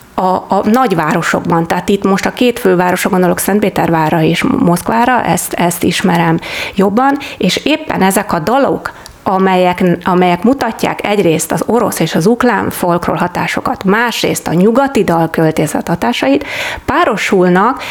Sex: female